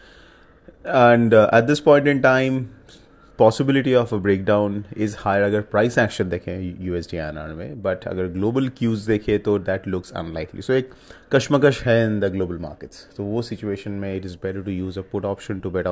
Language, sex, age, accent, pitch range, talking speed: English, male, 30-49, Indian, 90-110 Hz, 185 wpm